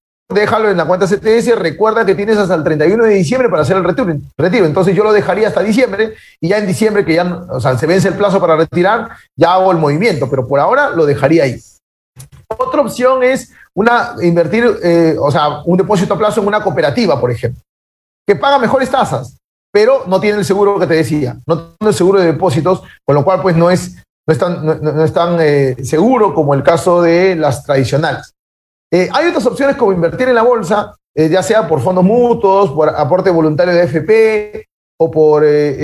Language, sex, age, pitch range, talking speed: Spanish, male, 40-59, 160-220 Hz, 210 wpm